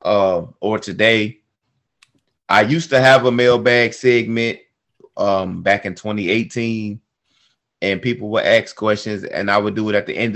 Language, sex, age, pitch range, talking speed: English, male, 30-49, 105-130 Hz, 155 wpm